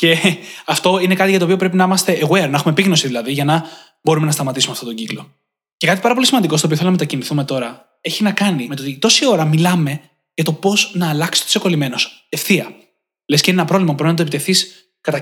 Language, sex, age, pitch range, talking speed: Greek, male, 20-39, 150-200 Hz, 245 wpm